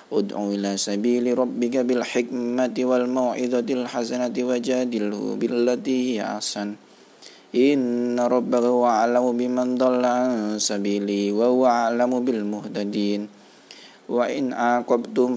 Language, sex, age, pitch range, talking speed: Indonesian, male, 20-39, 105-125 Hz, 95 wpm